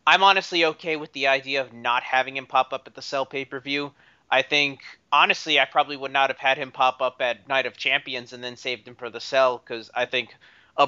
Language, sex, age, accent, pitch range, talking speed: English, male, 30-49, American, 125-145 Hz, 235 wpm